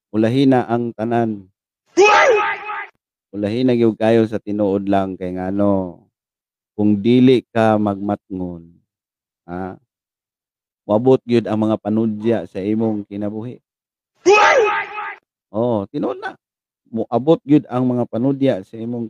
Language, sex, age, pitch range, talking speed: Filipino, male, 40-59, 105-140 Hz, 105 wpm